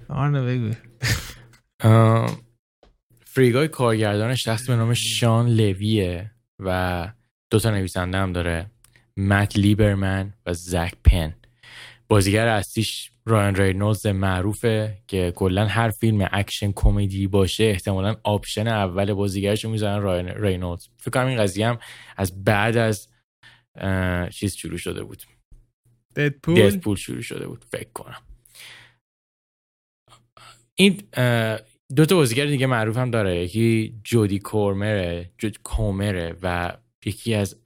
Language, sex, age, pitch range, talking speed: Persian, male, 10-29, 95-115 Hz, 110 wpm